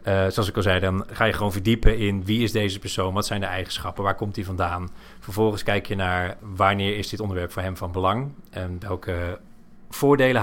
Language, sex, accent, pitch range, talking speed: Dutch, male, Dutch, 95-120 Hz, 220 wpm